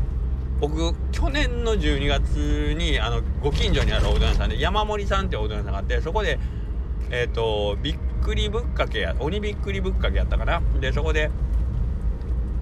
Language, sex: Japanese, male